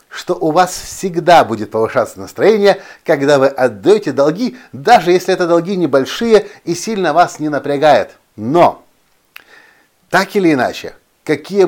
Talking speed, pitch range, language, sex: 135 wpm, 140-175 Hz, Russian, male